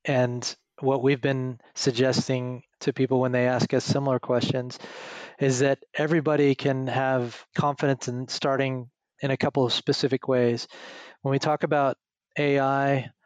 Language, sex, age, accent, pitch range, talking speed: English, male, 30-49, American, 125-140 Hz, 145 wpm